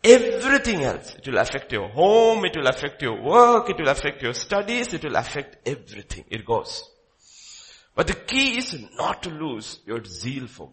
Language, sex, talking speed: English, male, 185 wpm